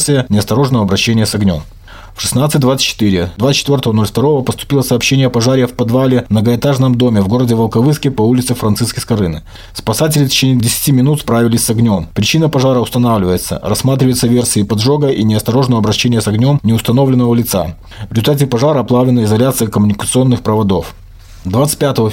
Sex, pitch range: male, 110-135 Hz